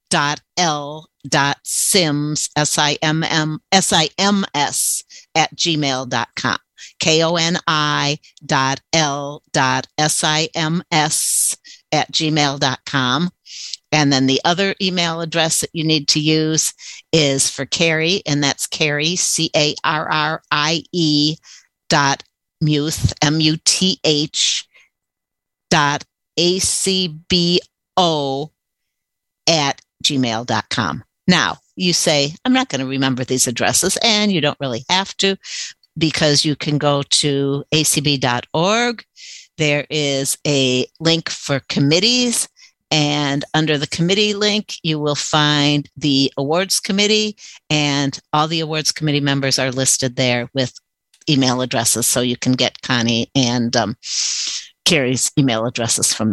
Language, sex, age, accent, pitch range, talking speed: English, female, 50-69, American, 140-165 Hz, 135 wpm